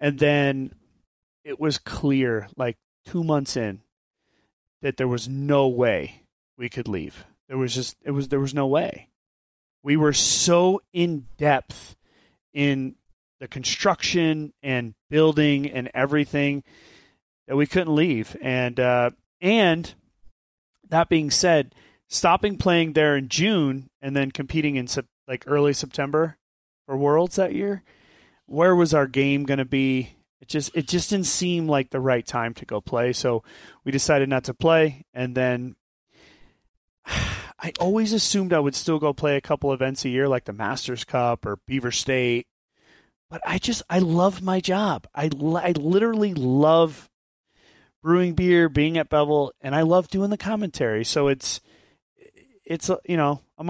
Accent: American